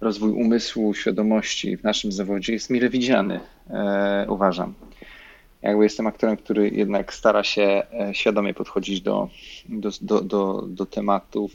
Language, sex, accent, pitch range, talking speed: Polish, male, native, 100-110 Hz, 140 wpm